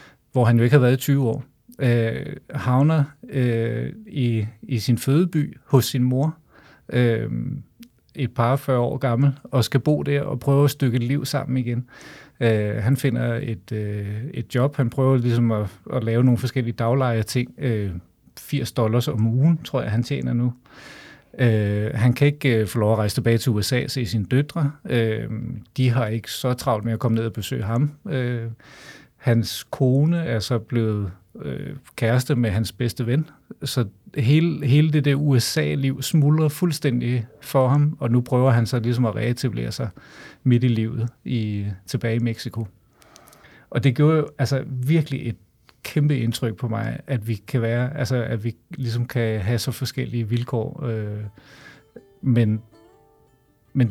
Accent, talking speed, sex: native, 175 wpm, male